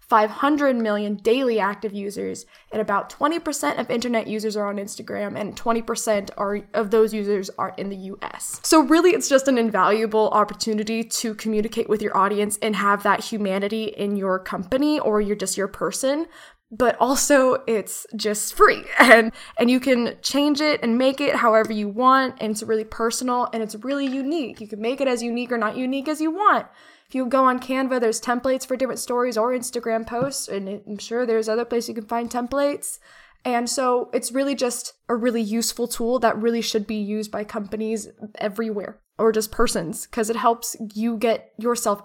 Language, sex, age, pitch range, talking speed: English, female, 10-29, 210-245 Hz, 190 wpm